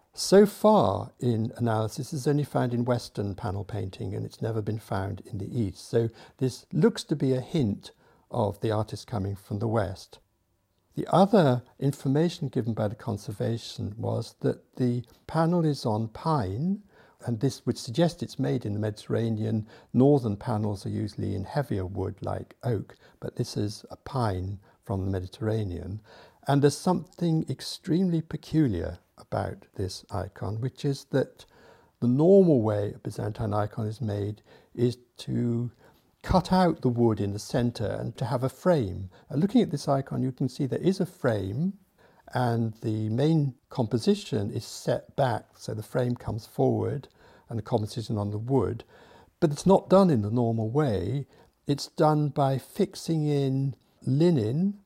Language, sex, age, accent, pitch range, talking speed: English, male, 60-79, British, 110-145 Hz, 165 wpm